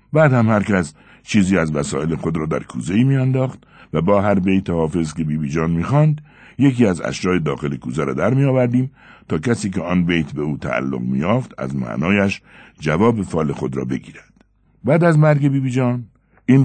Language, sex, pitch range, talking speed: Persian, male, 80-125 Hz, 185 wpm